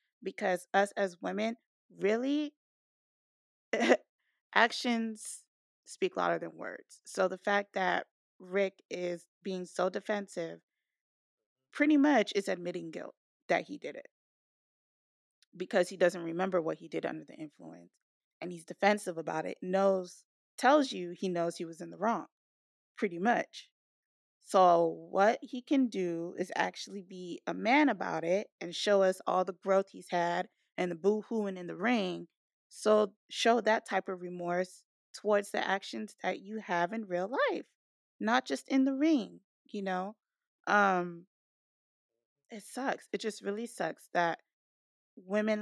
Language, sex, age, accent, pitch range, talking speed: English, female, 20-39, American, 175-220 Hz, 145 wpm